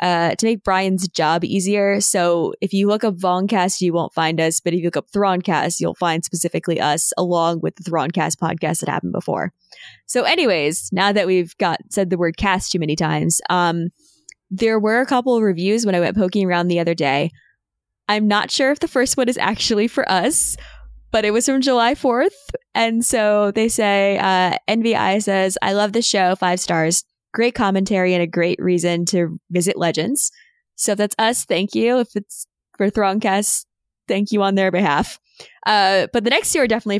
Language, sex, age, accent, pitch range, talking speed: English, female, 20-39, American, 175-220 Hz, 200 wpm